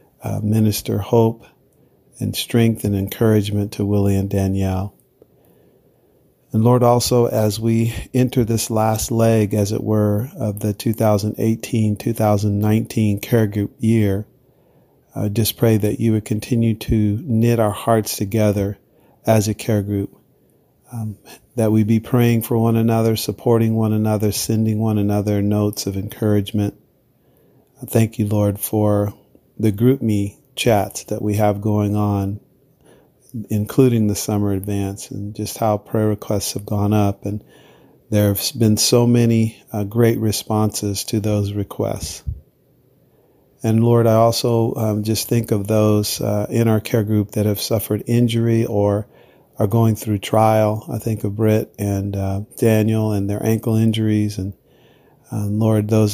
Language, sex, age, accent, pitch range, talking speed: English, male, 50-69, American, 105-115 Hz, 145 wpm